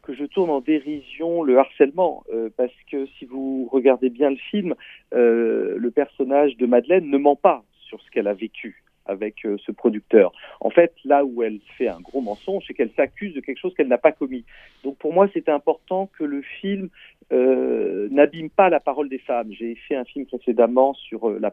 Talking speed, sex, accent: 210 wpm, male, French